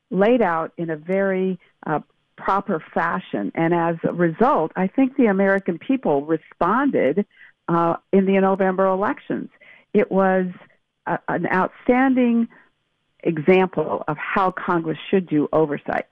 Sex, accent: female, American